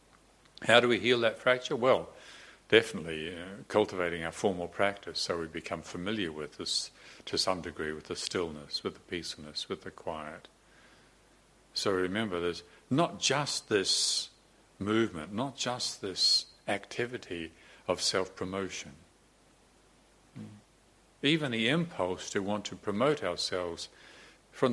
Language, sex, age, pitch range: English, male, 60-79, 85-115 Hz